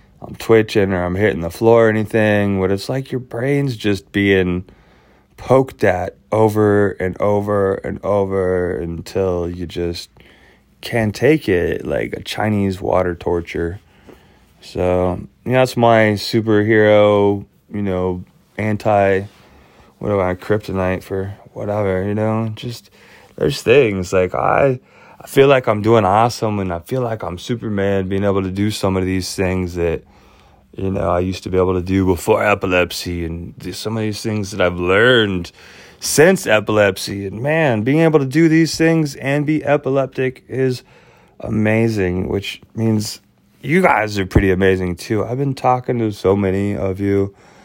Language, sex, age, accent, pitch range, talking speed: English, male, 20-39, American, 95-115 Hz, 160 wpm